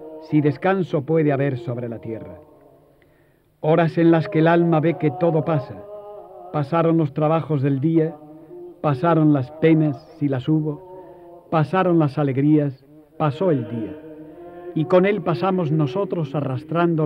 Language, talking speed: Spanish, 140 wpm